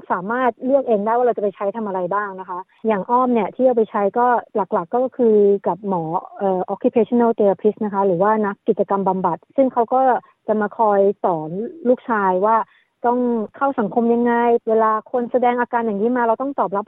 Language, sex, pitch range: Thai, female, 210-250 Hz